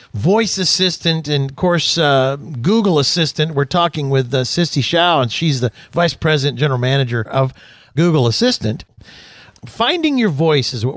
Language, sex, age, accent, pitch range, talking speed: English, male, 50-69, American, 125-175 Hz, 160 wpm